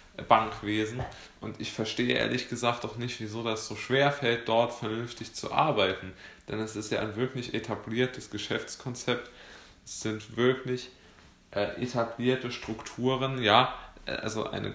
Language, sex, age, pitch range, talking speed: German, male, 20-39, 100-120 Hz, 140 wpm